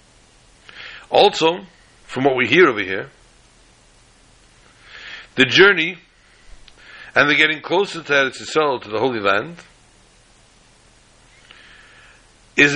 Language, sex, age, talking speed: English, male, 60-79, 90 wpm